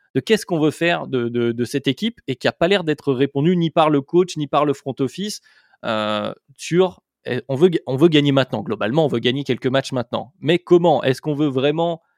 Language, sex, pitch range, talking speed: French, male, 125-155 Hz, 230 wpm